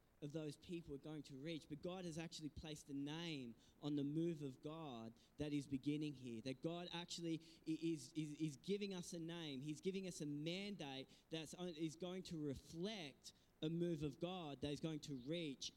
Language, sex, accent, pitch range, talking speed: English, male, Australian, 145-195 Hz, 200 wpm